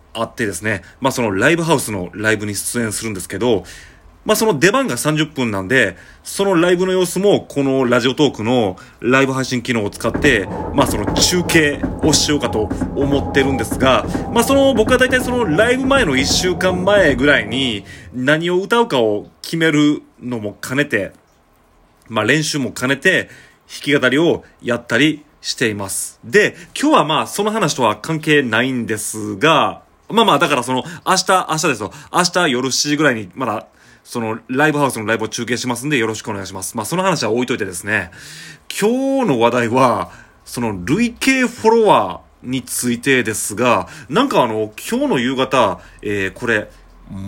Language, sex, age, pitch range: Japanese, male, 30-49, 110-175 Hz